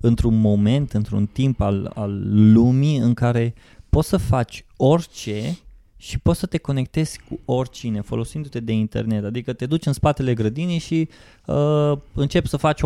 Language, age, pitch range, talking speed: Romanian, 20-39, 120-155 Hz, 160 wpm